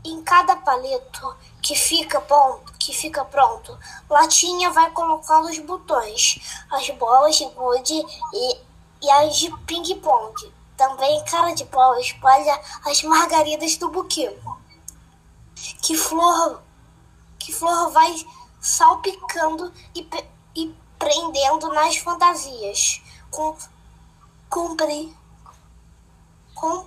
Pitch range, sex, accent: 290-355 Hz, female, Brazilian